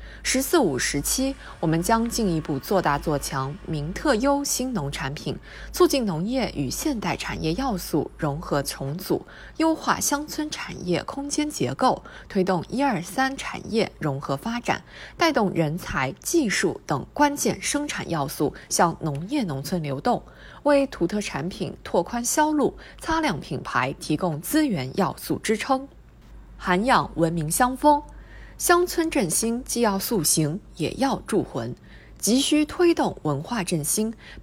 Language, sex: Chinese, female